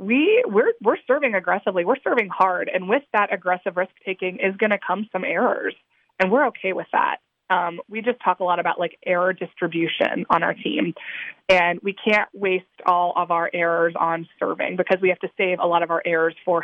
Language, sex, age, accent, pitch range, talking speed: English, female, 20-39, American, 175-205 Hz, 210 wpm